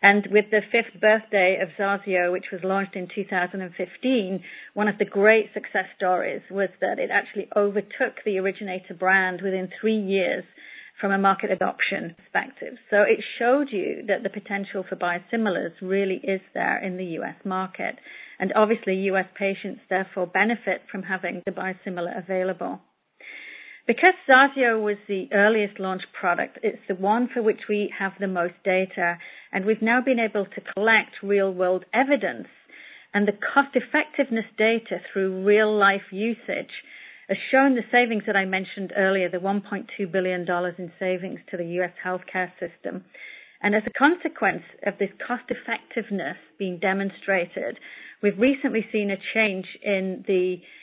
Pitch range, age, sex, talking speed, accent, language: 190-220 Hz, 40-59, female, 150 wpm, British, English